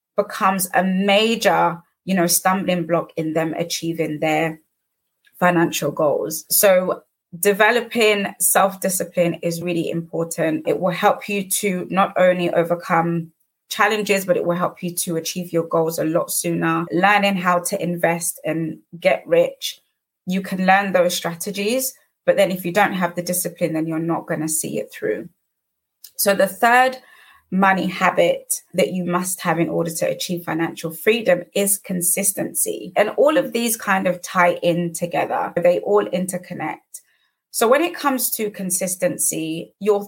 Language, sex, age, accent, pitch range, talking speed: English, female, 20-39, British, 170-205 Hz, 155 wpm